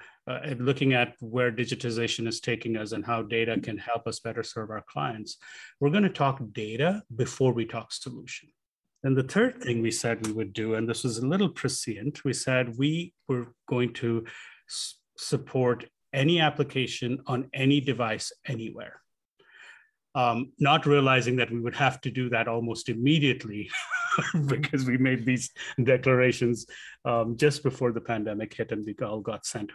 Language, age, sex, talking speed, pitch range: English, 30-49, male, 170 wpm, 115-140 Hz